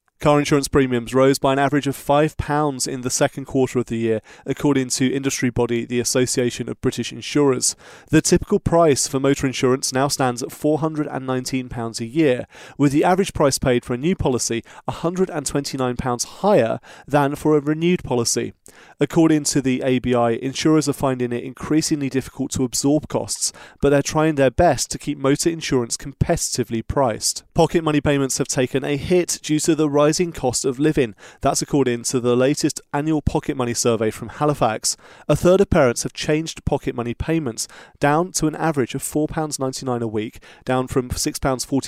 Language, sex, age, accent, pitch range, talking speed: English, male, 30-49, British, 125-155 Hz, 175 wpm